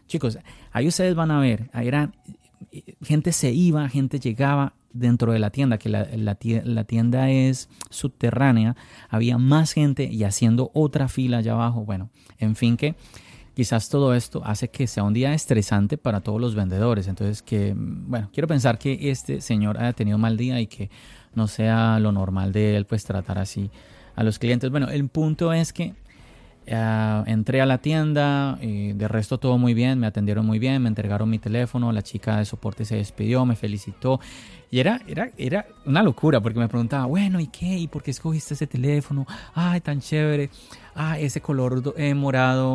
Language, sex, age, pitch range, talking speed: Spanish, male, 30-49, 110-140 Hz, 190 wpm